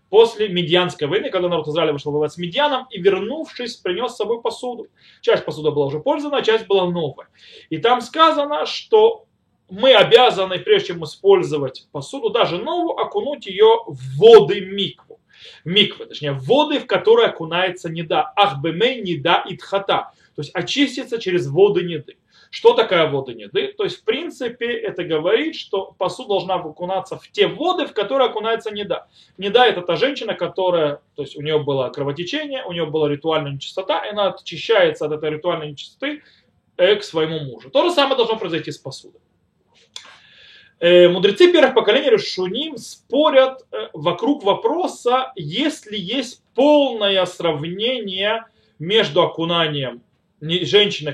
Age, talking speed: 20-39, 145 wpm